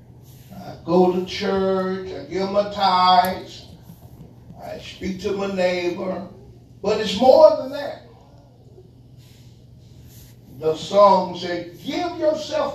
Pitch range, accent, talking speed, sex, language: 130-210 Hz, American, 110 wpm, male, English